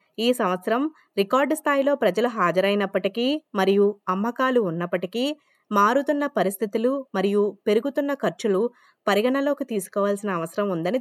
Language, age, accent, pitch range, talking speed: Telugu, 20-39, native, 185-240 Hz, 100 wpm